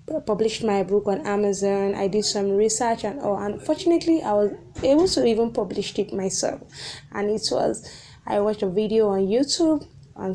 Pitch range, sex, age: 200-240 Hz, female, 10-29